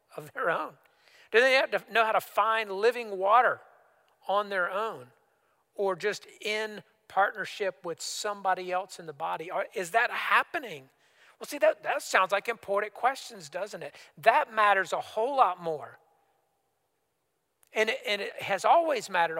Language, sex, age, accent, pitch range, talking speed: English, male, 40-59, American, 175-220 Hz, 160 wpm